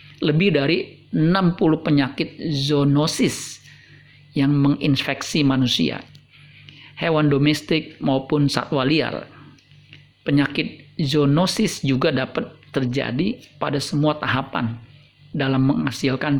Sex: male